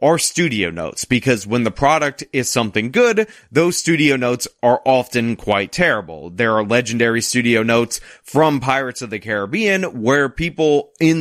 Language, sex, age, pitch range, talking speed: English, male, 30-49, 120-160 Hz, 160 wpm